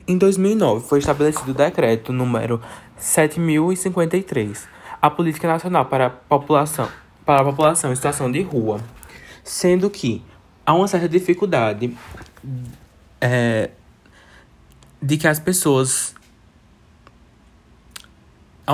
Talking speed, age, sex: 105 wpm, 20-39, male